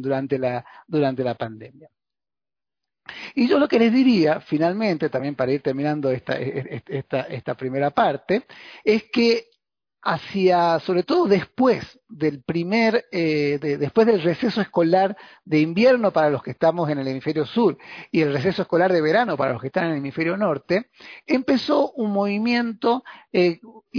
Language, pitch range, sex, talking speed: Spanish, 150-210 Hz, male, 160 wpm